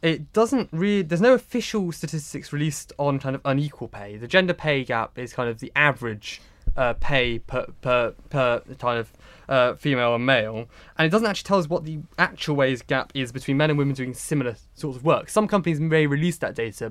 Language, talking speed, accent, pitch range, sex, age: English, 215 wpm, British, 125-160 Hz, male, 20-39